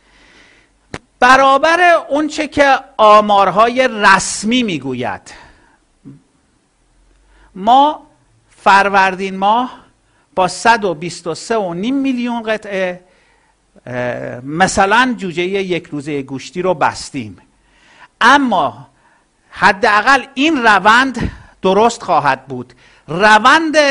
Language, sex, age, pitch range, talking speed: Persian, male, 50-69, 175-245 Hz, 75 wpm